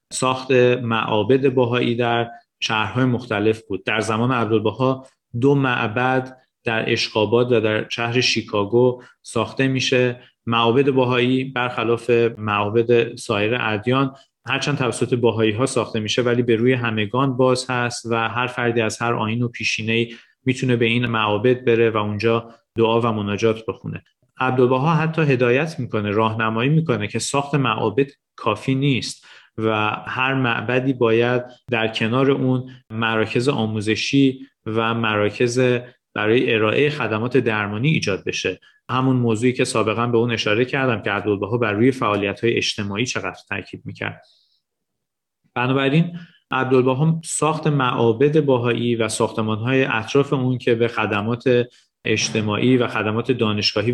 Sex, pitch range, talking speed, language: male, 110-130 Hz, 135 wpm, Persian